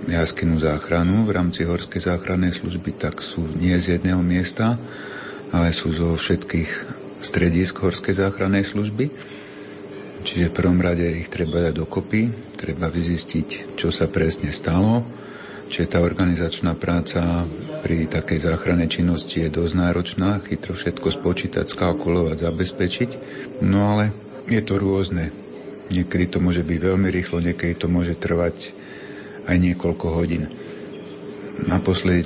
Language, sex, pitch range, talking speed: Slovak, male, 85-100 Hz, 130 wpm